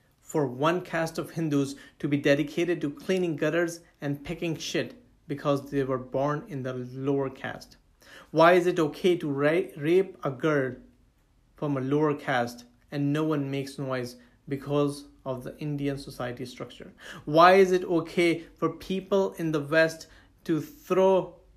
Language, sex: English, male